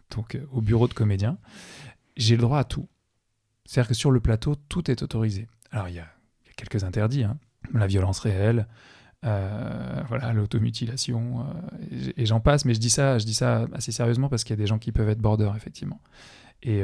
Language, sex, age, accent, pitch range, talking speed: French, male, 20-39, French, 105-125 Hz, 210 wpm